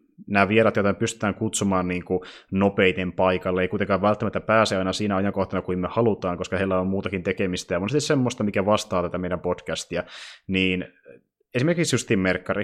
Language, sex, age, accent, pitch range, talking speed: Finnish, male, 20-39, native, 90-105 Hz, 165 wpm